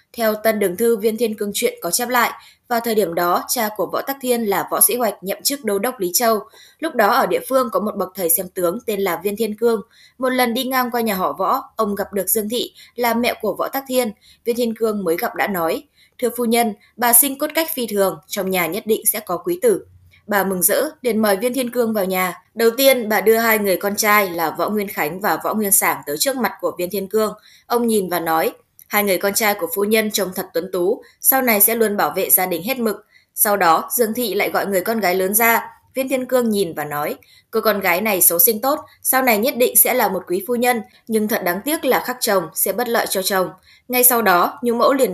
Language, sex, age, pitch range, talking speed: Vietnamese, female, 20-39, 190-240 Hz, 265 wpm